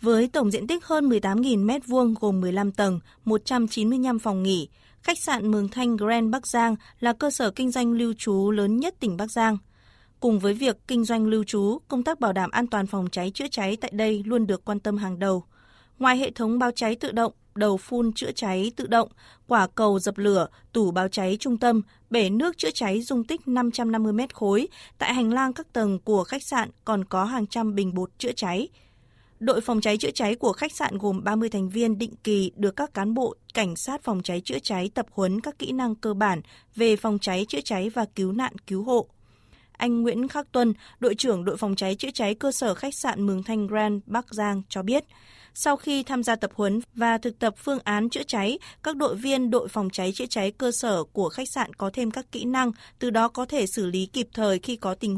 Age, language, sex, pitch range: 20-39, Vietnamese, female, 200-245 Hz